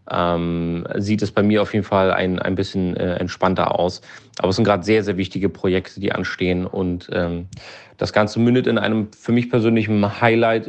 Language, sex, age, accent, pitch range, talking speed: German, male, 30-49, German, 90-105 Hz, 195 wpm